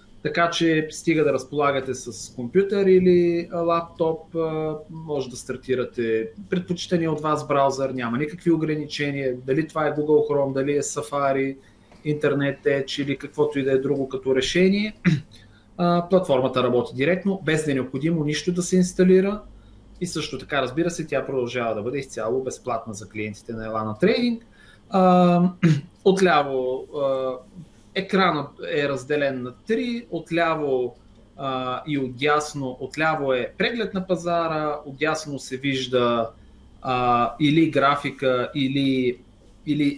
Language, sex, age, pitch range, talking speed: Bulgarian, male, 30-49, 130-165 Hz, 130 wpm